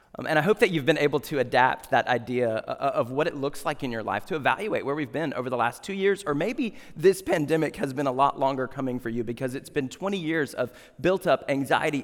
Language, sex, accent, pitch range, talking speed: English, male, American, 120-150 Hz, 255 wpm